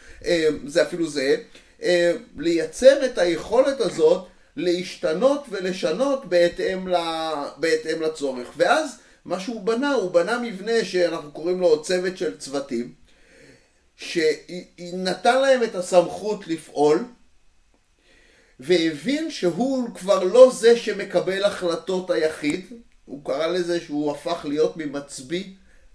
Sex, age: male, 30-49